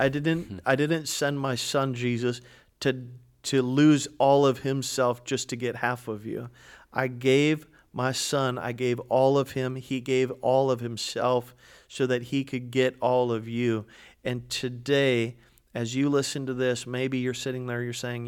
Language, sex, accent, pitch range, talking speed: English, male, American, 120-135 Hz, 180 wpm